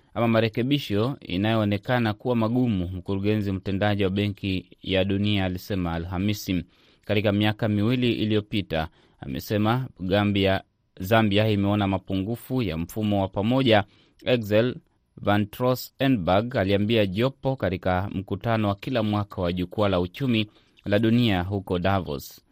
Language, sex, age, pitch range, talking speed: Swahili, male, 30-49, 95-115 Hz, 120 wpm